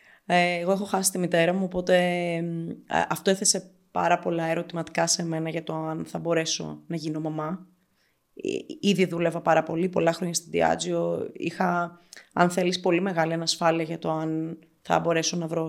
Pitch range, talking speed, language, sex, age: 165-195 Hz, 165 wpm, Greek, female, 20-39